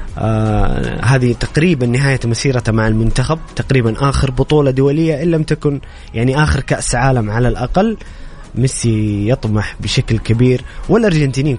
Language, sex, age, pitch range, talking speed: Arabic, male, 20-39, 115-145 Hz, 130 wpm